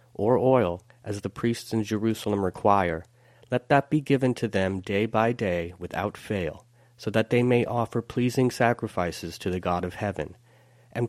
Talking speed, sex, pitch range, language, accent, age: 175 wpm, male, 100-120 Hz, English, American, 30-49